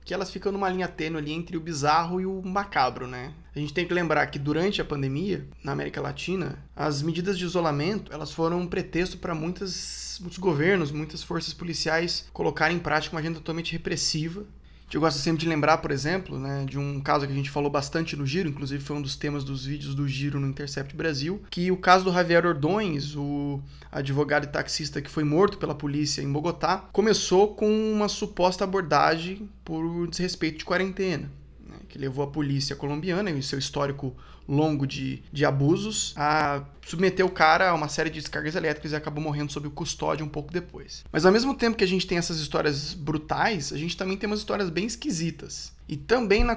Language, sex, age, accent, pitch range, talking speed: Portuguese, male, 20-39, Brazilian, 145-185 Hz, 200 wpm